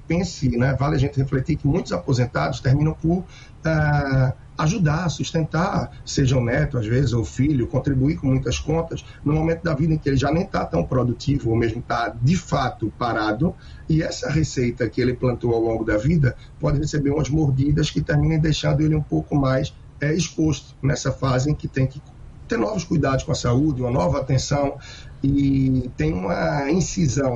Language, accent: Portuguese, Brazilian